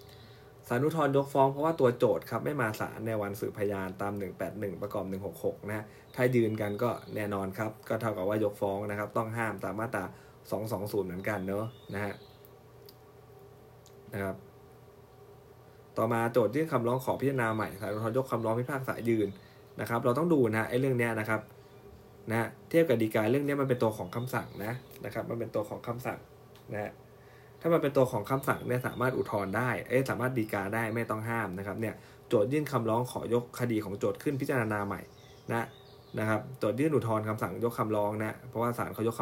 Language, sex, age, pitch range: Thai, male, 20-39, 105-130 Hz